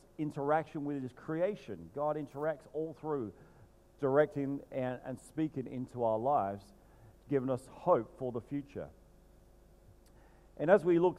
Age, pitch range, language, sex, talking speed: 50-69, 115-160 Hz, English, male, 135 wpm